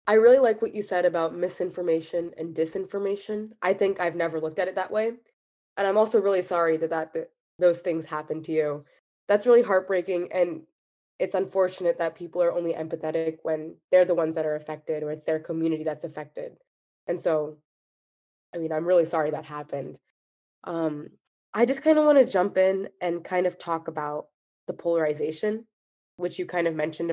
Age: 20-39